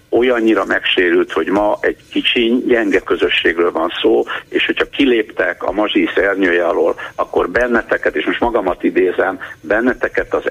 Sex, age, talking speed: male, 60-79, 135 wpm